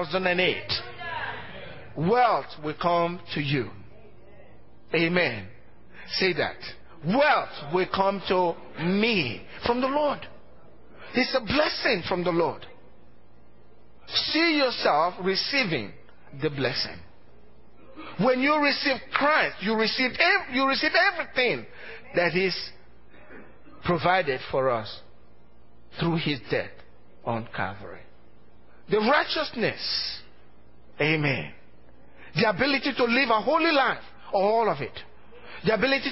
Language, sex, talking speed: English, male, 100 wpm